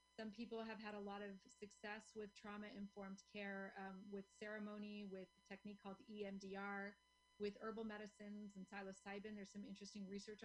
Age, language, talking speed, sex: 30-49, English, 160 wpm, female